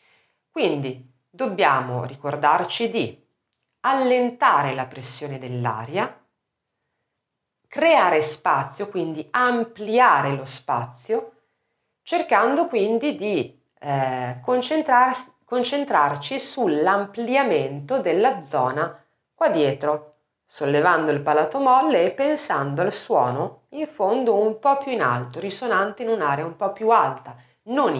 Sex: female